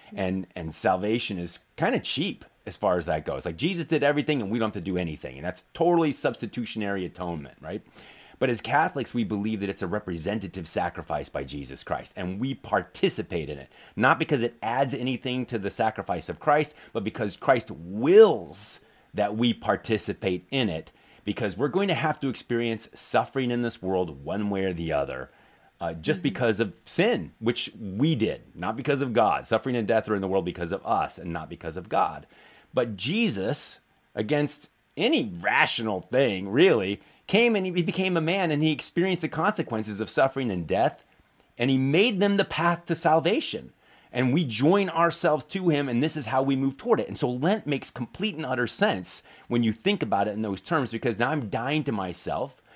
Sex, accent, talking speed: male, American, 200 wpm